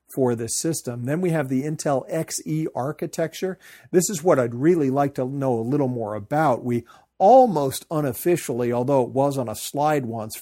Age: 40-59